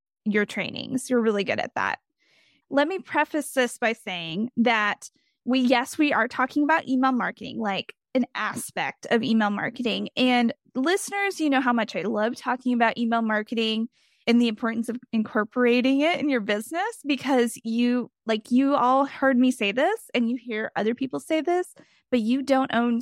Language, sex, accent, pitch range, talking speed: English, female, American, 220-265 Hz, 180 wpm